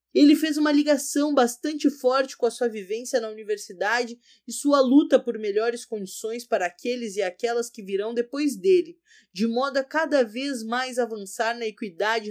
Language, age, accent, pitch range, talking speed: Portuguese, 20-39, Brazilian, 220-270 Hz, 170 wpm